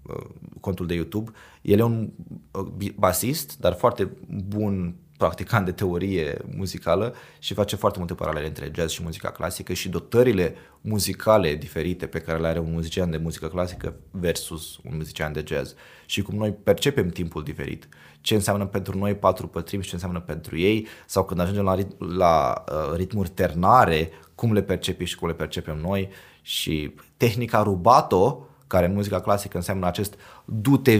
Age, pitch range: 20-39, 85-105 Hz